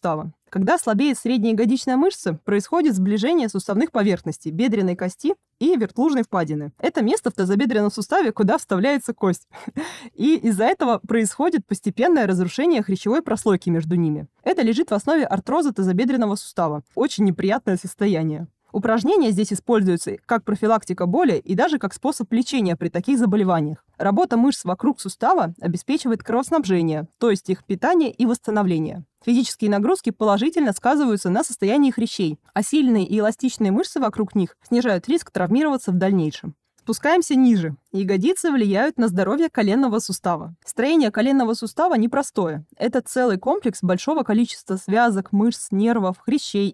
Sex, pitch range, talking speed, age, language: female, 190-255 Hz, 140 wpm, 20-39, Russian